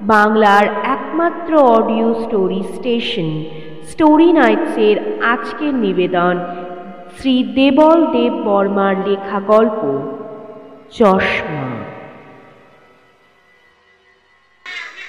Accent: native